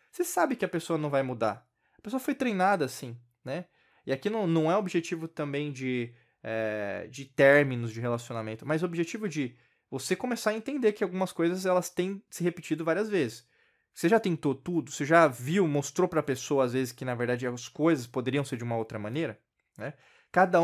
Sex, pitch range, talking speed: male, 125-170 Hz, 205 wpm